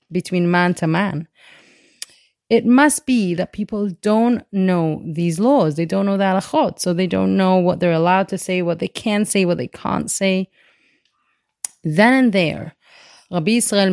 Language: English